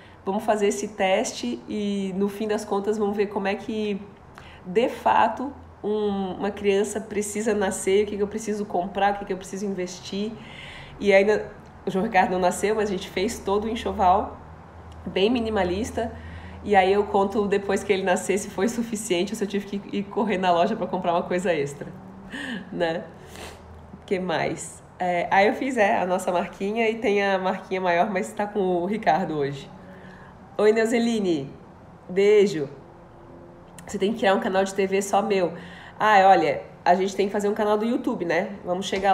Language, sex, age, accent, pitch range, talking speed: Portuguese, female, 20-39, Brazilian, 185-210 Hz, 190 wpm